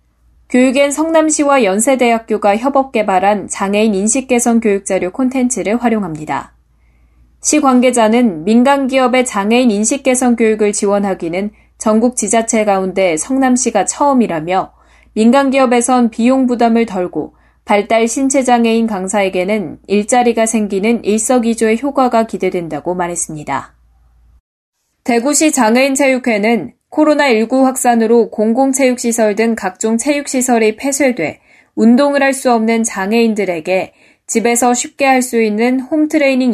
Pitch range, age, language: 195-255 Hz, 20-39, Korean